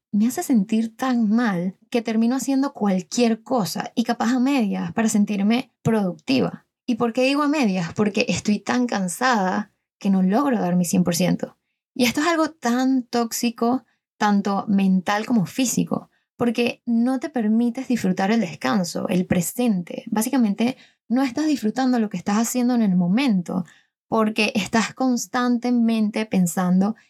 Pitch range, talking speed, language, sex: 200-250 Hz, 150 wpm, Spanish, female